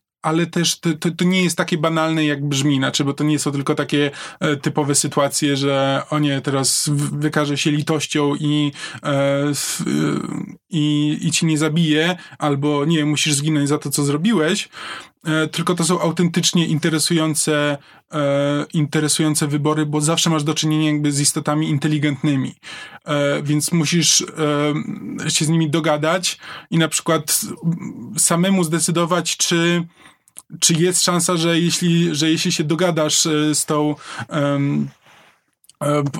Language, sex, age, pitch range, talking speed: Polish, male, 20-39, 145-160 Hz, 135 wpm